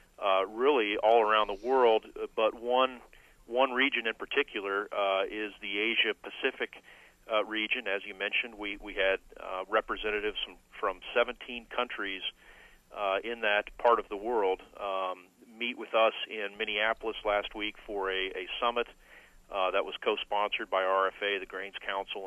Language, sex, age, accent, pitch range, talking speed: English, male, 40-59, American, 100-110 Hz, 155 wpm